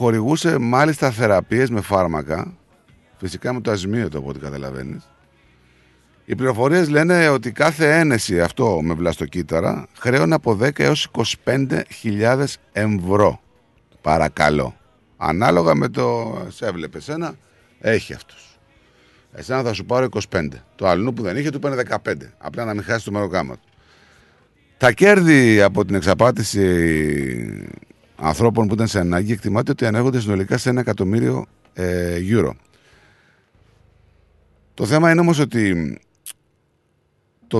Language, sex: Greek, male